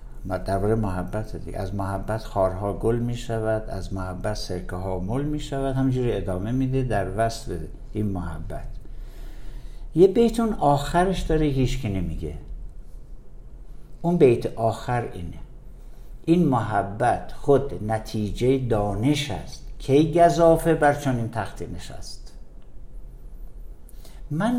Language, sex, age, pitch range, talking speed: Persian, male, 60-79, 100-150 Hz, 115 wpm